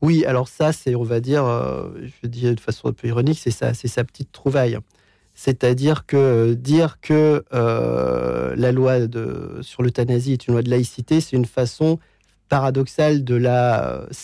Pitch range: 120-150 Hz